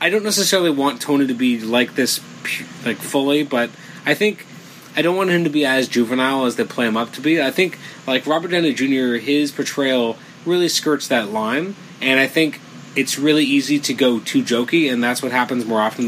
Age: 20-39